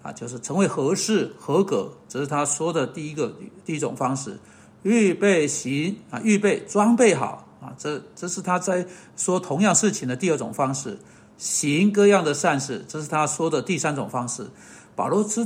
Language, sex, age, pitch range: Chinese, male, 50-69, 165-220 Hz